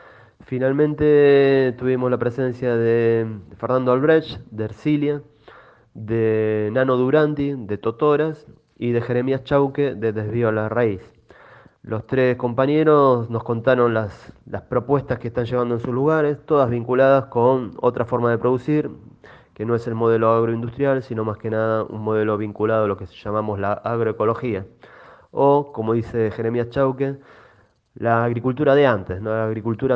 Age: 20-39